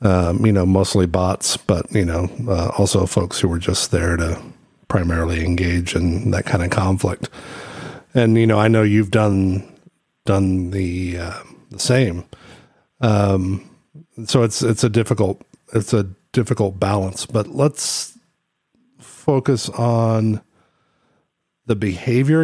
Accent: American